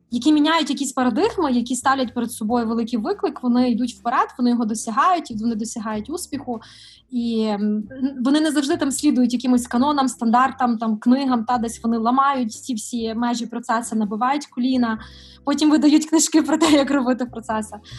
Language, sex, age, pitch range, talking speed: Russian, female, 20-39, 215-255 Hz, 165 wpm